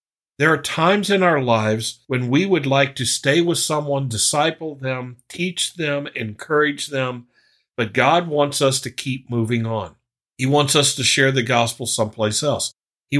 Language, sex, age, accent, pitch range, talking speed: English, male, 50-69, American, 115-145 Hz, 175 wpm